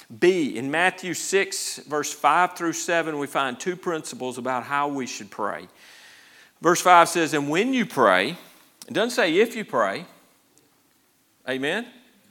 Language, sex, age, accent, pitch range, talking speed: English, male, 50-69, American, 145-195 Hz, 150 wpm